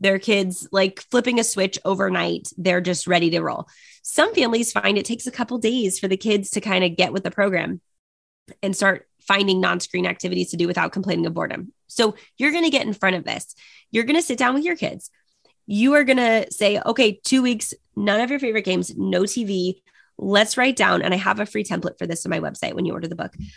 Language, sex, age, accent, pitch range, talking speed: English, female, 20-39, American, 190-240 Hz, 235 wpm